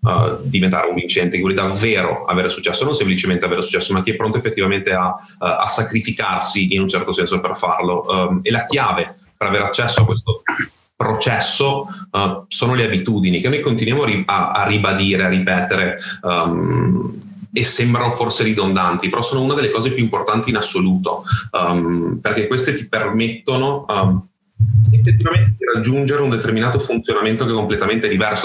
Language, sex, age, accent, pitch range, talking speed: Italian, male, 30-49, native, 95-115 Hz, 150 wpm